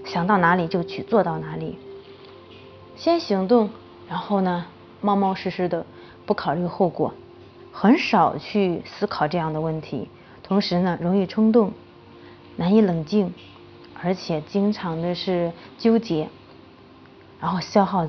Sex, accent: female, native